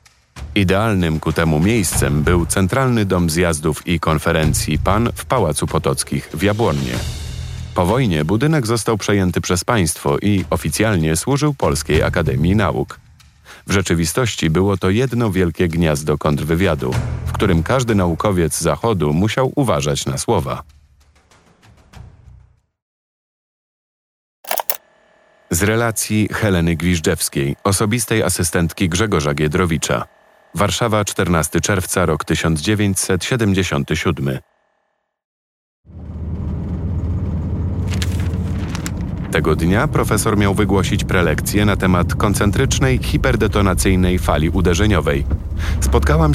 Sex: male